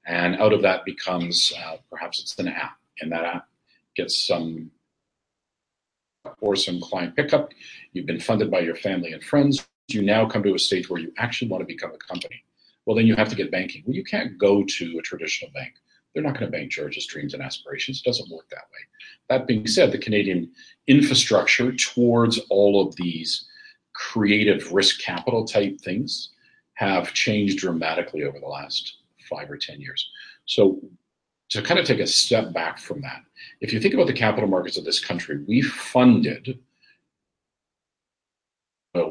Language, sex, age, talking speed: English, male, 50-69, 180 wpm